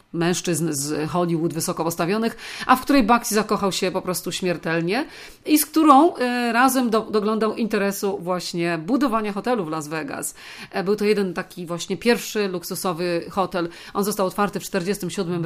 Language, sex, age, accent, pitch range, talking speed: Polish, female, 40-59, native, 170-220 Hz, 150 wpm